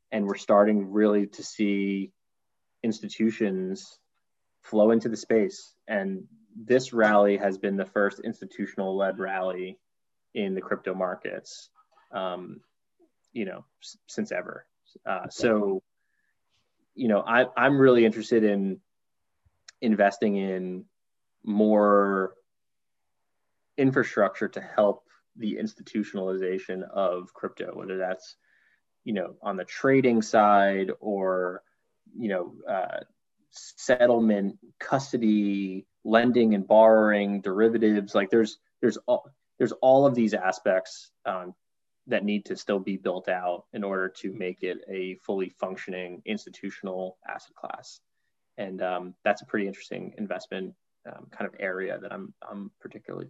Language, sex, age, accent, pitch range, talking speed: English, male, 20-39, American, 95-115 Hz, 125 wpm